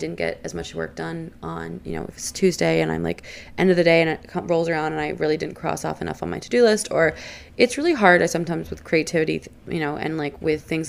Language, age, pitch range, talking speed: English, 20-39, 150-180 Hz, 260 wpm